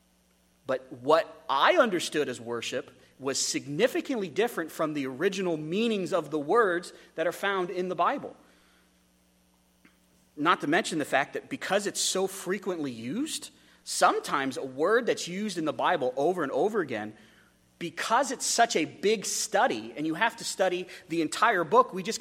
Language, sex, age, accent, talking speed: English, male, 30-49, American, 165 wpm